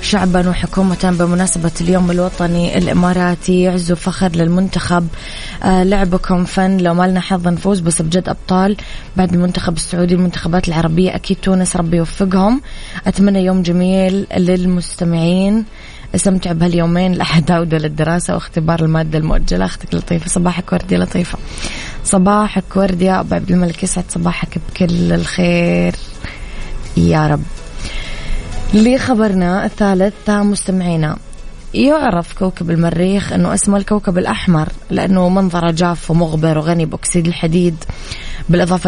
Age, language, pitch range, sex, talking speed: 20-39, Arabic, 170-185 Hz, female, 115 wpm